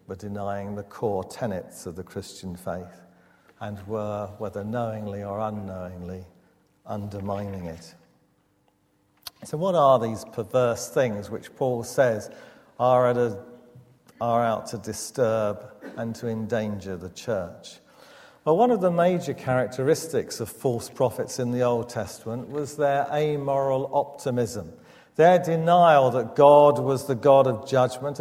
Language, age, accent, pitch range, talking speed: English, 50-69, British, 110-140 Hz, 130 wpm